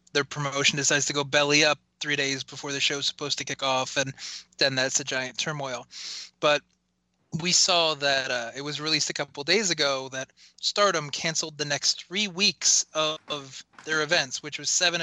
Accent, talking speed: American, 190 wpm